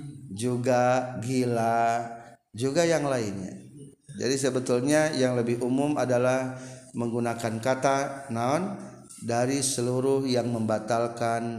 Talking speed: 95 wpm